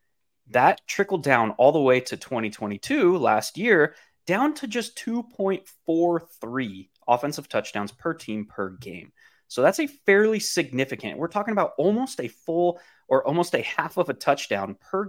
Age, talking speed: 20-39, 155 wpm